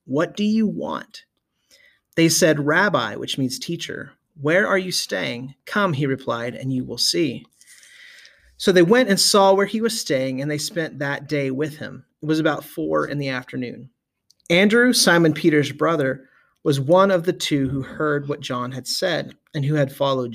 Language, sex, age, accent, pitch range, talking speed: English, male, 30-49, American, 135-185 Hz, 185 wpm